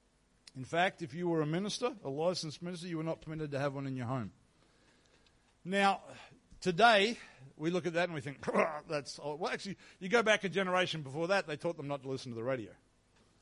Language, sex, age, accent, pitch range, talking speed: English, male, 50-69, Australian, 135-180 Hz, 210 wpm